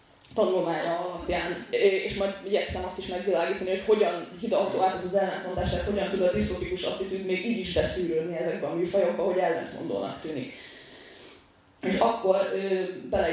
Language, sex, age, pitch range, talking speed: Hungarian, female, 20-39, 175-200 Hz, 150 wpm